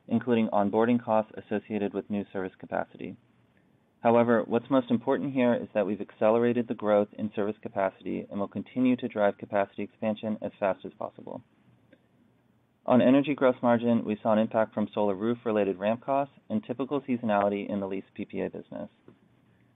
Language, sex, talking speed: English, male, 165 wpm